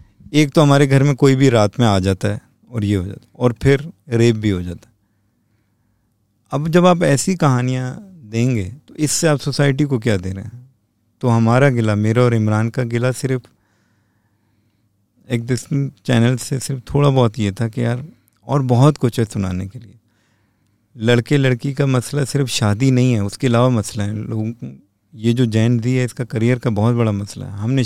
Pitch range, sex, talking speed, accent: 105-135 Hz, male, 190 wpm, Indian